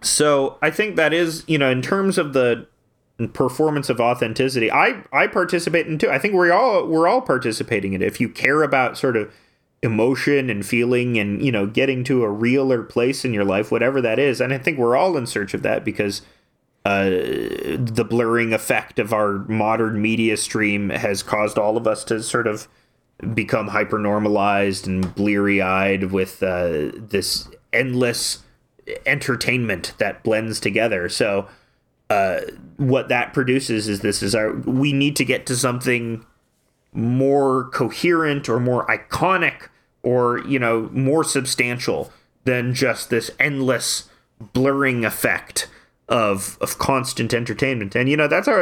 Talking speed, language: 160 wpm, English